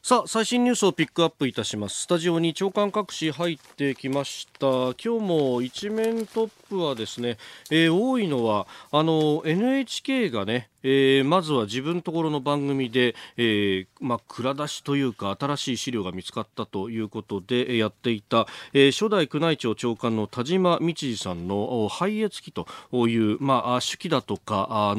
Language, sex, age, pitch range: Japanese, male, 40-59, 110-165 Hz